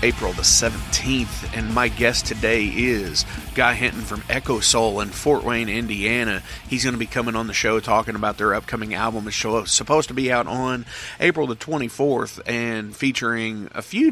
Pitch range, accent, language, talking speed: 110-125 Hz, American, English, 185 wpm